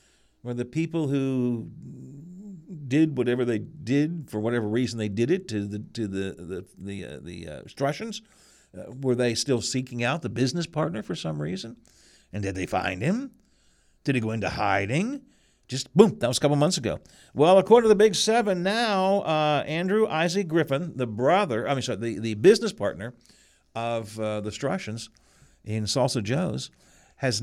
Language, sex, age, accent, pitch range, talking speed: English, male, 50-69, American, 110-155 Hz, 175 wpm